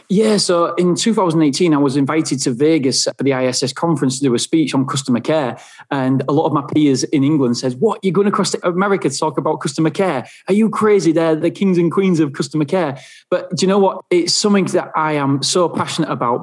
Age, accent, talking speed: 20-39, British, 230 wpm